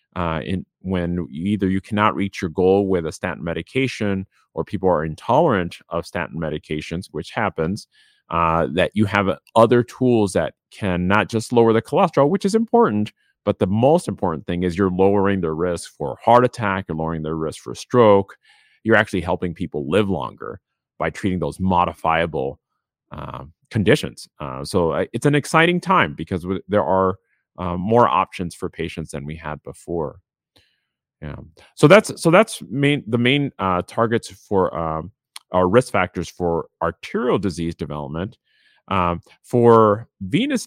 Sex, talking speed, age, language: male, 160 wpm, 30-49, English